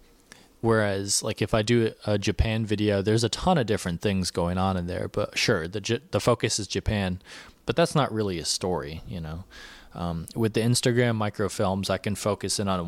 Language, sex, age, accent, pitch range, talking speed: English, male, 20-39, American, 95-115 Hz, 205 wpm